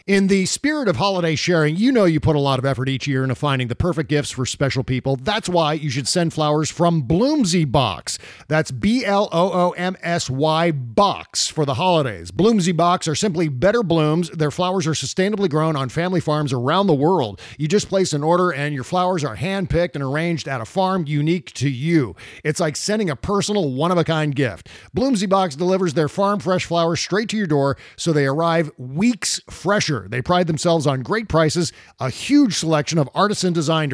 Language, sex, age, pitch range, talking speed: English, male, 40-59, 145-190 Hz, 190 wpm